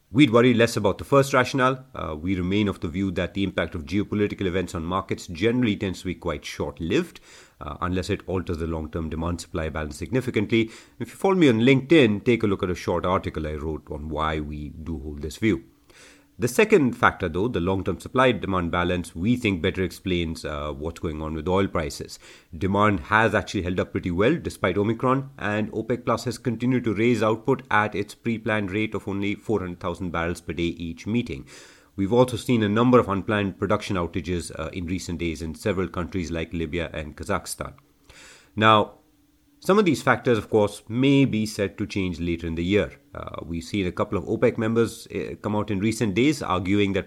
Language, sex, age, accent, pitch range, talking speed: English, male, 30-49, Indian, 90-115 Hz, 200 wpm